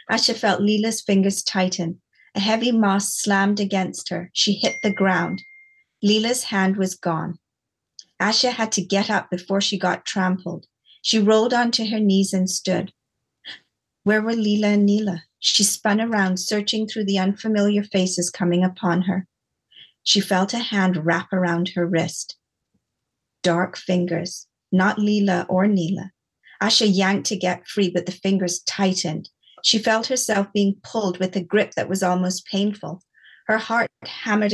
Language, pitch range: English, 180-215 Hz